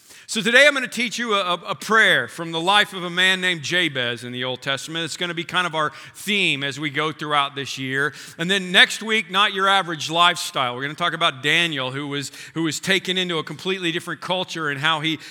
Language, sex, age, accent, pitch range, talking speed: English, male, 40-59, American, 145-180 Hz, 245 wpm